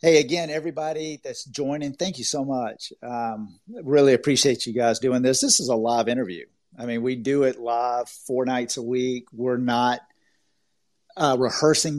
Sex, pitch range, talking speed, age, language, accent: male, 120-135 Hz, 175 wpm, 50-69, English, American